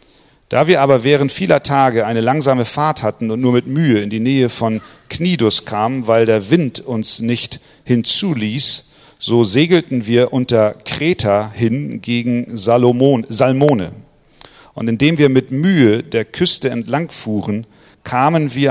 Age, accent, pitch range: 40-59, German, 110-140 Hz